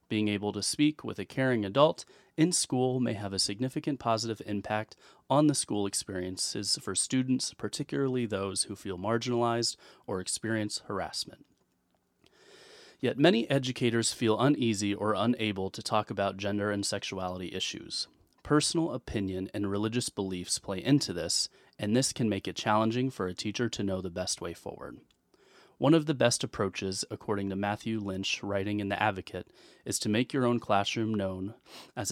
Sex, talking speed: male, 165 wpm